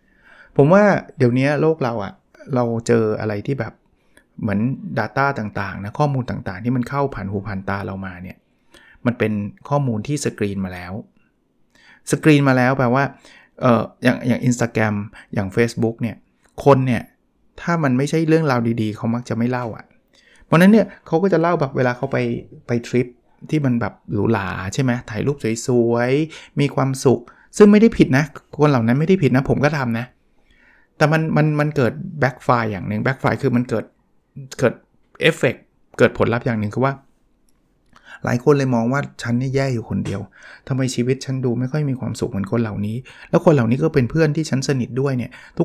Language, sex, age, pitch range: Thai, male, 20-39, 115-145 Hz